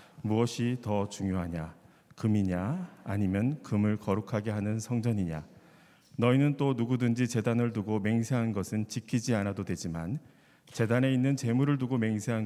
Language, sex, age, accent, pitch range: Korean, male, 40-59, native, 100-120 Hz